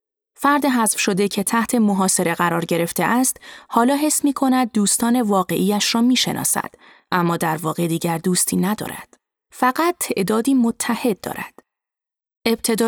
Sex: female